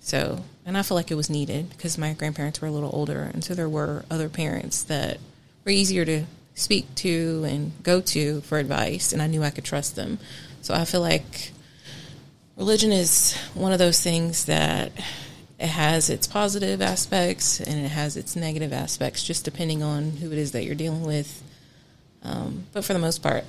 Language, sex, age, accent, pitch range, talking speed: English, female, 30-49, American, 145-165 Hz, 195 wpm